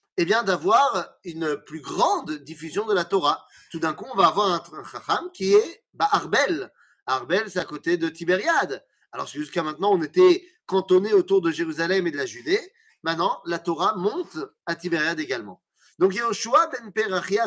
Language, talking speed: French, 185 wpm